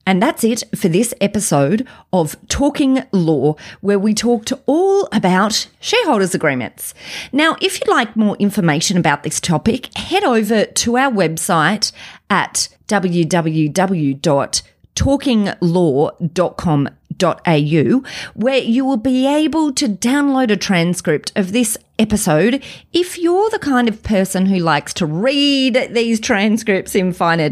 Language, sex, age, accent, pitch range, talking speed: English, female, 30-49, Australian, 175-255 Hz, 125 wpm